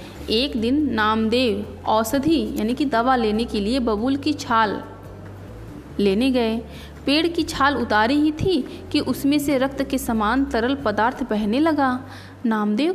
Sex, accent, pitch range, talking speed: female, native, 215-295 Hz, 150 wpm